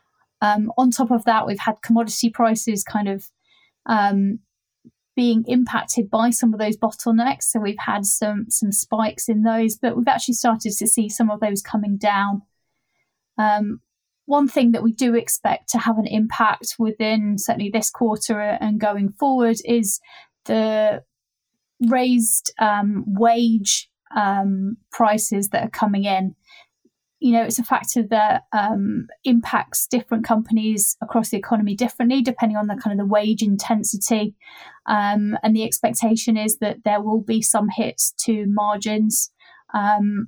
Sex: female